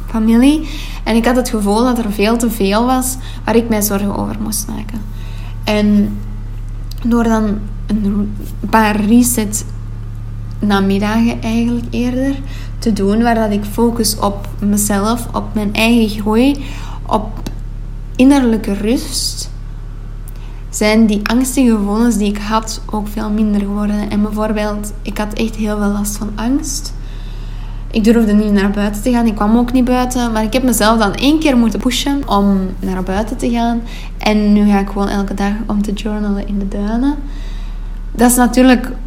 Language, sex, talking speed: Dutch, female, 165 wpm